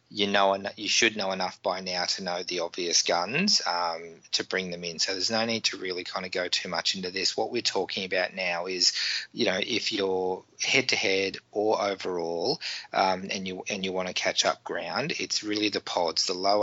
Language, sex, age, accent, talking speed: English, male, 20-39, Australian, 215 wpm